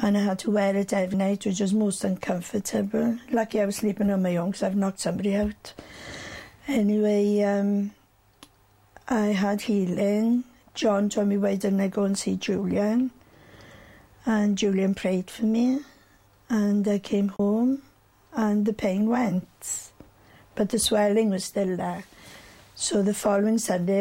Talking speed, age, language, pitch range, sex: 155 wpm, 60-79, English, 190-215 Hz, female